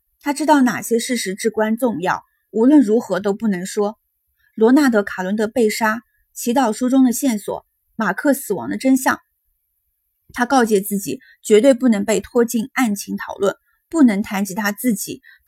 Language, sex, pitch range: Chinese, female, 205-255 Hz